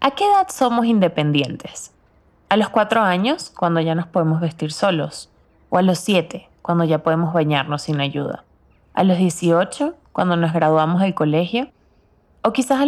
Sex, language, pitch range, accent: female, Spanish, 160-195 Hz, Venezuelan